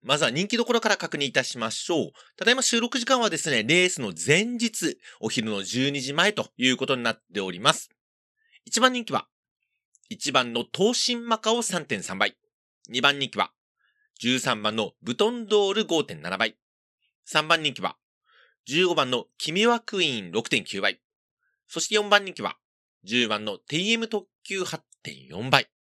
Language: Japanese